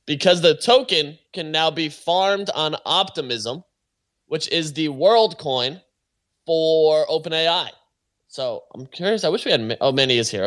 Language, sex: English, male